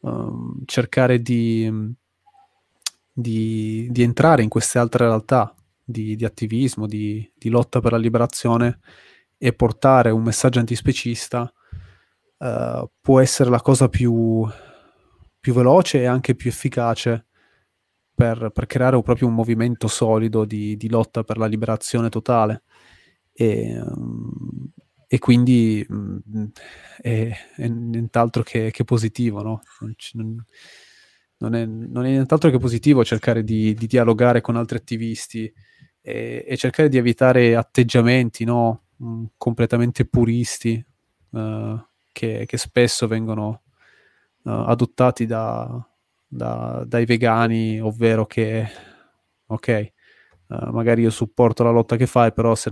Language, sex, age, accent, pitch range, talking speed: Italian, male, 20-39, native, 110-120 Hz, 125 wpm